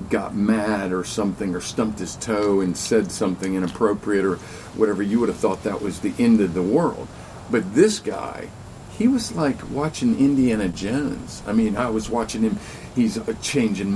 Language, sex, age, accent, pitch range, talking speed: English, male, 50-69, American, 95-140 Hz, 180 wpm